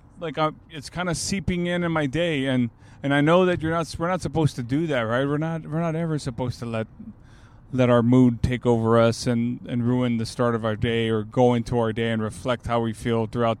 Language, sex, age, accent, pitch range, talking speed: English, male, 30-49, American, 120-155 Hz, 245 wpm